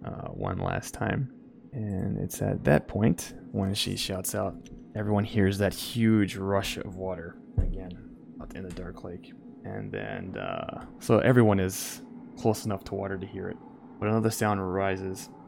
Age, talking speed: 20-39, 165 wpm